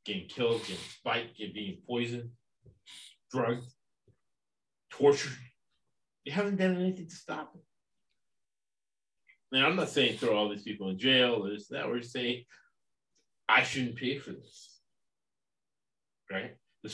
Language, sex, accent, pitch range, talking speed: English, male, American, 115-140 Hz, 130 wpm